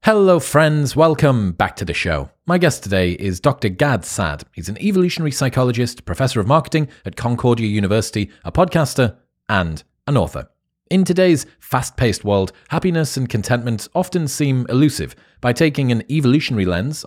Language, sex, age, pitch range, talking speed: English, male, 30-49, 100-150 Hz, 155 wpm